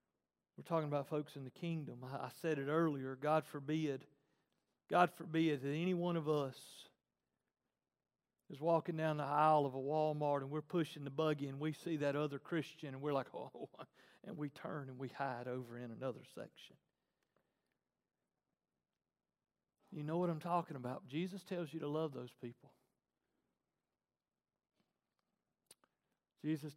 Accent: American